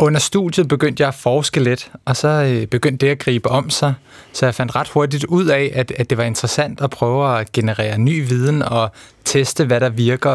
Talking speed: 215 wpm